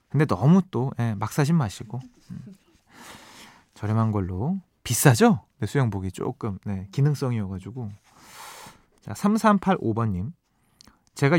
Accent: native